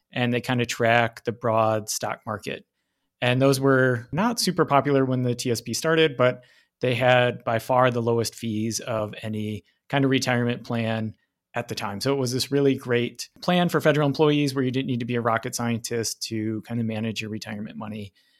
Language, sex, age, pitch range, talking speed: English, male, 30-49, 115-145 Hz, 200 wpm